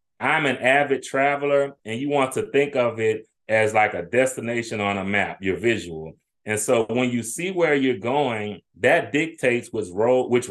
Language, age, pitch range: English, 30-49, 110-140 Hz